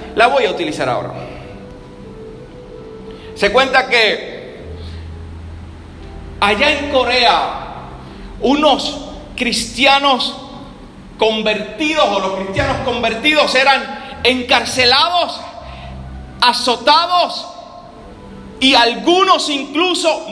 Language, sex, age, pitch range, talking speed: Spanish, male, 40-59, 205-310 Hz, 70 wpm